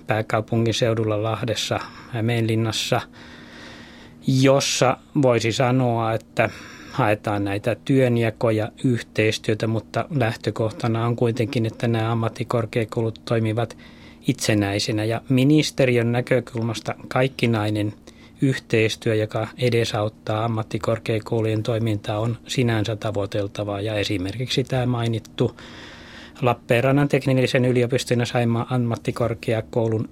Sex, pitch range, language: male, 110-125 Hz, Finnish